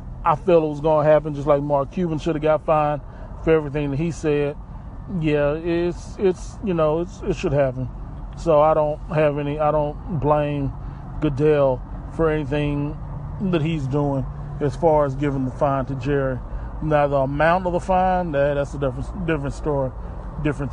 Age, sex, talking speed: 30-49, male, 180 wpm